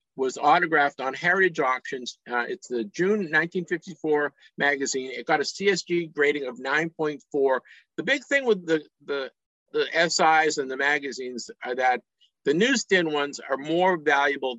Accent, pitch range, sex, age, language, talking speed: American, 130-180 Hz, male, 50-69, English, 150 wpm